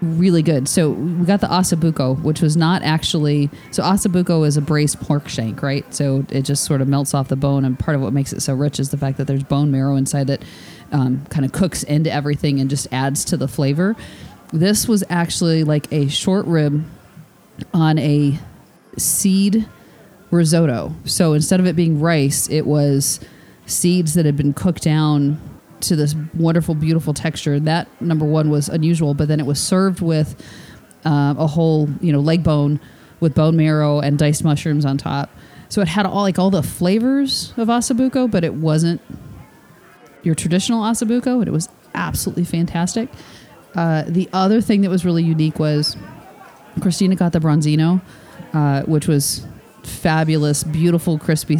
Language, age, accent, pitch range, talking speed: English, 30-49, American, 145-175 Hz, 175 wpm